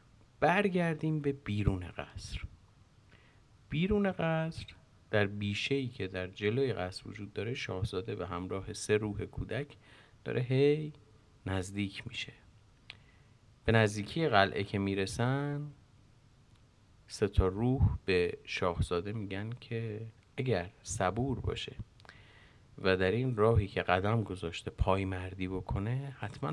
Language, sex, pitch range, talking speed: Persian, male, 100-130 Hz, 110 wpm